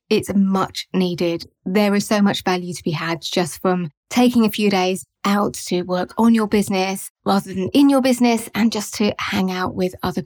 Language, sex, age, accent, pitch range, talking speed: English, female, 20-39, British, 185-225 Hz, 205 wpm